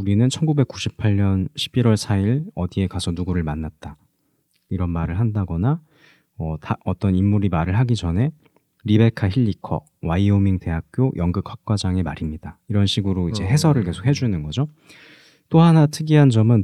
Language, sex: Korean, male